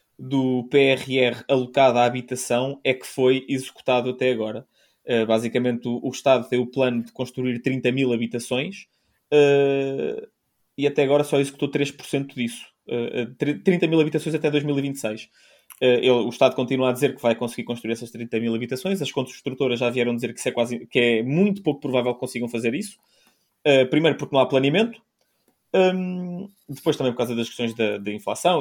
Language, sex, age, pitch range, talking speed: Portuguese, male, 20-39, 120-145 Hz, 165 wpm